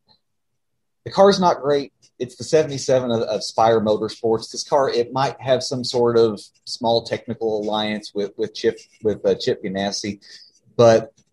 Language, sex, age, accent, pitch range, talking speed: English, male, 30-49, American, 110-135 Hz, 165 wpm